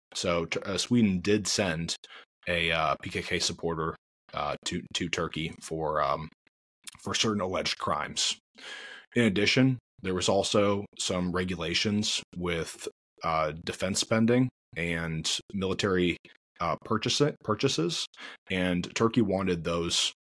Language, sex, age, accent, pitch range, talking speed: English, male, 20-39, American, 85-105 Hz, 110 wpm